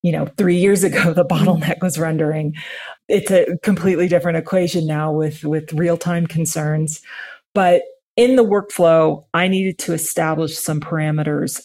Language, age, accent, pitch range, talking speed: English, 40-59, American, 155-185 Hz, 150 wpm